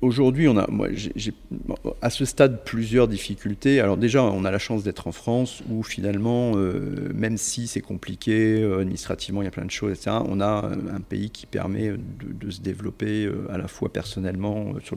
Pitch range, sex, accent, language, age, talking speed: 95-110 Hz, male, French, French, 40-59, 205 wpm